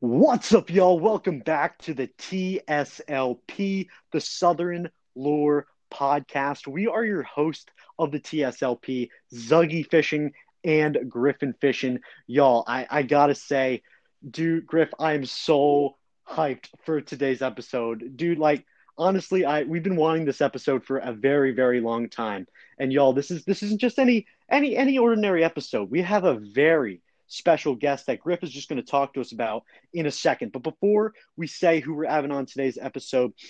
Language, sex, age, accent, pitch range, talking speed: English, male, 30-49, American, 130-160 Hz, 165 wpm